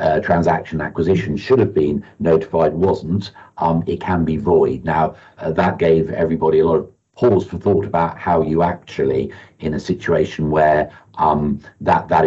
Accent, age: British, 50-69